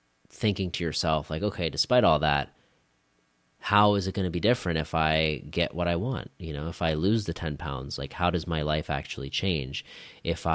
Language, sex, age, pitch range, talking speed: English, male, 30-49, 75-95 Hz, 210 wpm